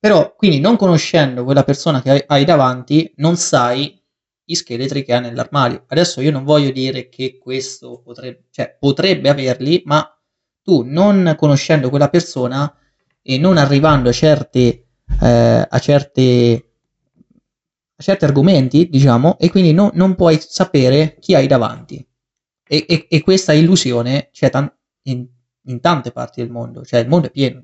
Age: 20-39